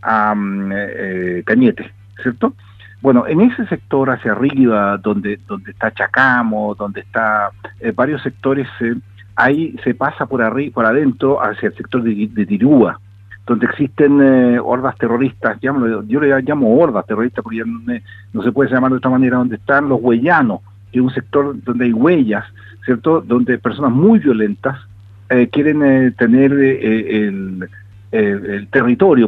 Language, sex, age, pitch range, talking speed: Spanish, male, 50-69, 100-135 Hz, 165 wpm